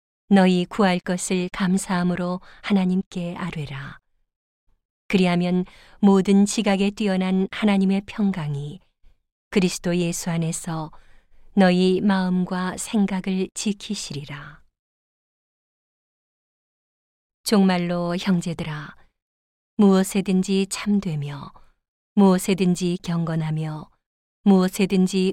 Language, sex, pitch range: Korean, female, 170-195 Hz